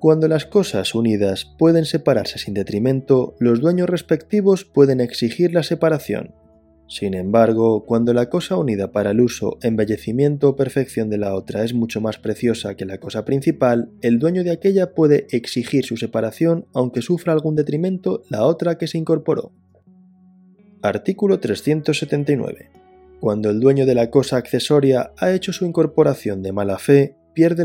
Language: Spanish